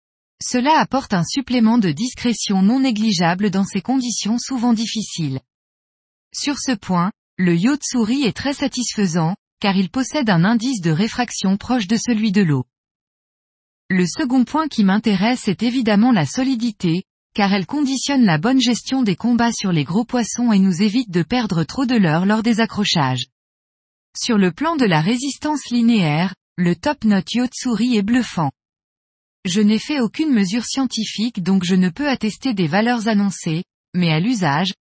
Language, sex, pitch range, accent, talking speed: French, female, 185-250 Hz, French, 165 wpm